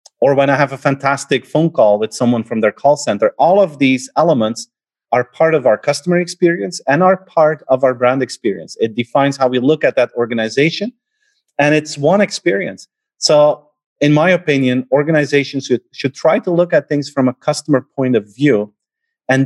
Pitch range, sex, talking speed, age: 115-150 Hz, male, 190 wpm, 30-49